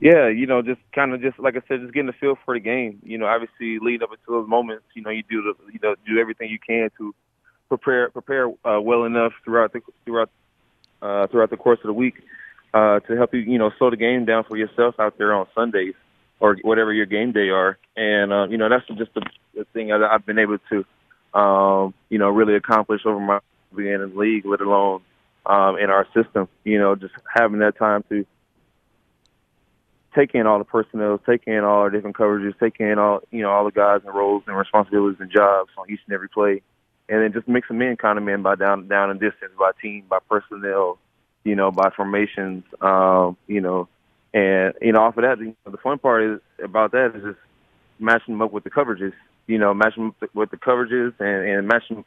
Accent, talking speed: American, 225 wpm